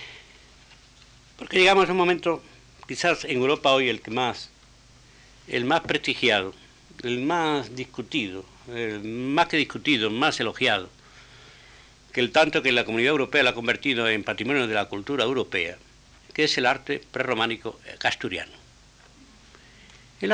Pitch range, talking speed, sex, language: 115-165 Hz, 140 wpm, male, Spanish